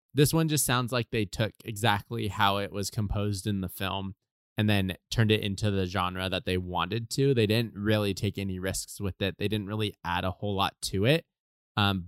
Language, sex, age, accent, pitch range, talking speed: English, male, 20-39, American, 95-115 Hz, 220 wpm